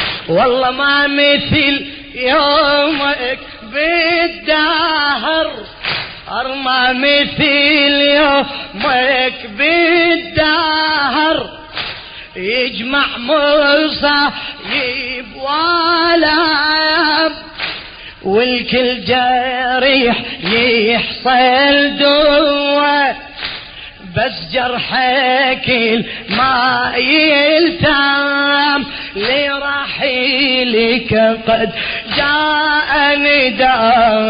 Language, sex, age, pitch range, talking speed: Arabic, female, 30-49, 230-285 Hz, 45 wpm